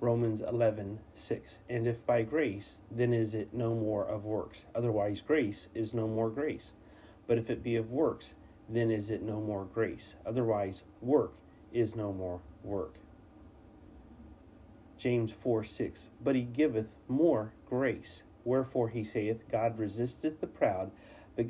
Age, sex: 40-59, male